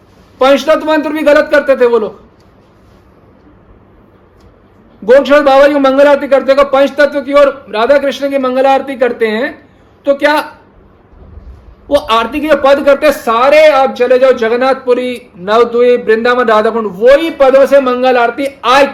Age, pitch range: 50-69, 220-280 Hz